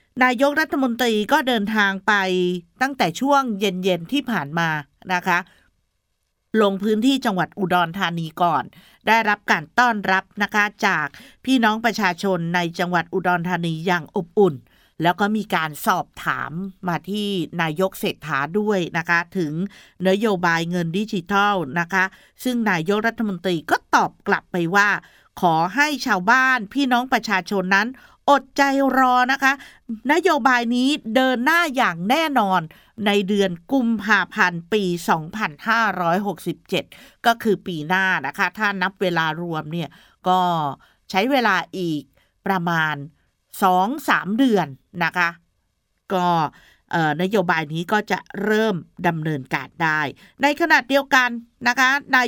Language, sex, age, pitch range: Thai, female, 50-69, 175-240 Hz